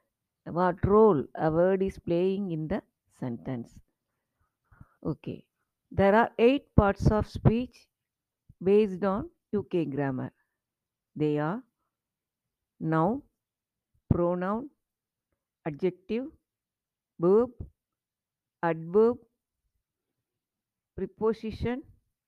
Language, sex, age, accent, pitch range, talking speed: Tamil, female, 50-69, native, 155-220 Hz, 75 wpm